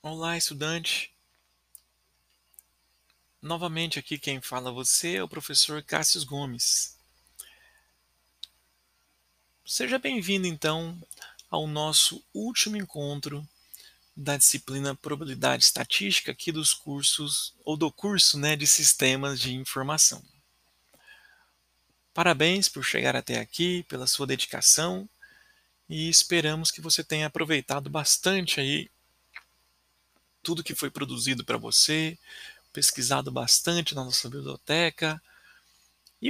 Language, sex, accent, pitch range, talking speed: Portuguese, male, Brazilian, 135-175 Hz, 100 wpm